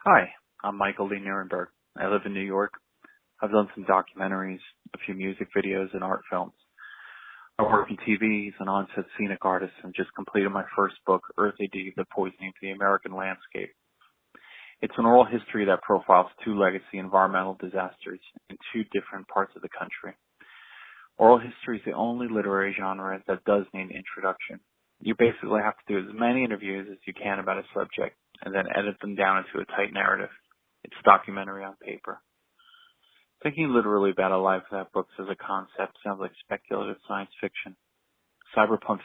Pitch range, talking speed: 95-105 Hz, 180 wpm